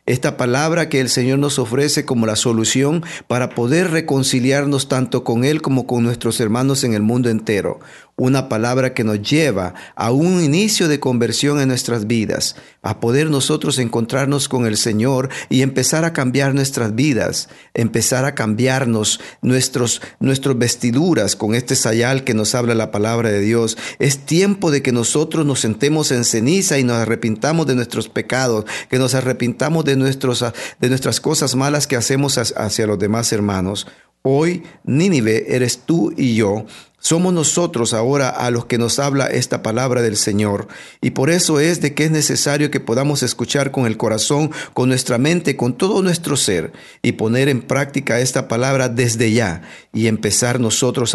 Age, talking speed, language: 50-69, 170 wpm, Spanish